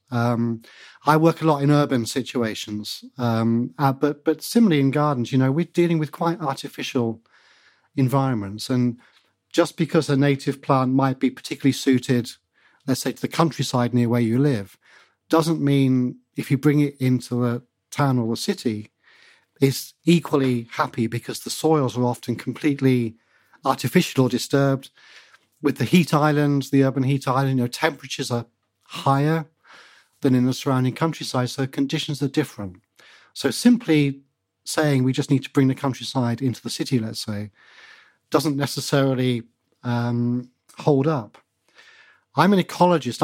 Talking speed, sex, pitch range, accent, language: 160 wpm, male, 120-150 Hz, British, English